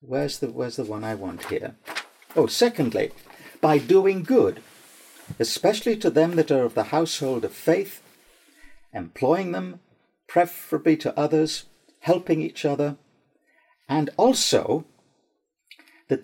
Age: 50-69